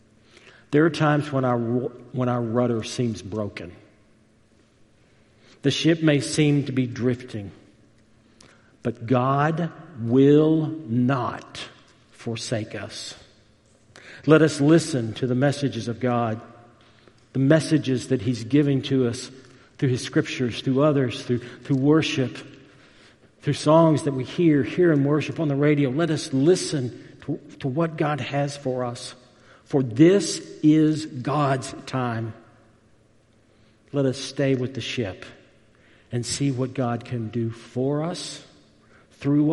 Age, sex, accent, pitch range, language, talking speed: 50-69, male, American, 110-140 Hz, English, 130 wpm